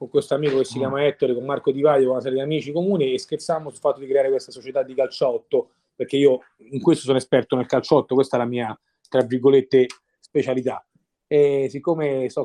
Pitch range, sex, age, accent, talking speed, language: 130-160 Hz, male, 30-49, native, 210 wpm, Italian